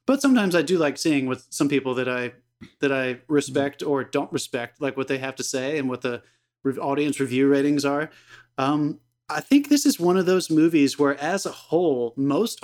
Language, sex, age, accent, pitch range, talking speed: English, male, 30-49, American, 130-165 Hz, 210 wpm